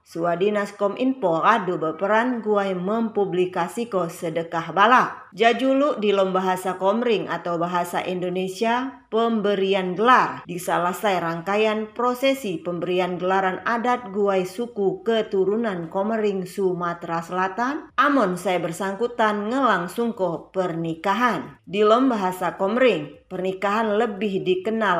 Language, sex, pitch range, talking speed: Indonesian, female, 180-230 Hz, 95 wpm